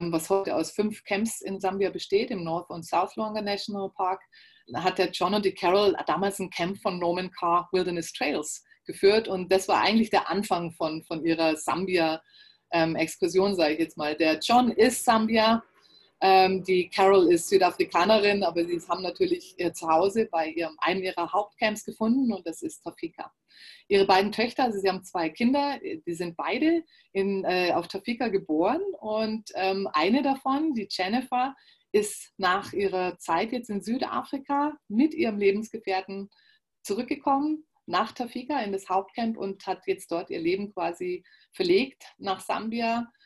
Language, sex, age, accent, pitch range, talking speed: German, female, 30-49, German, 180-250 Hz, 165 wpm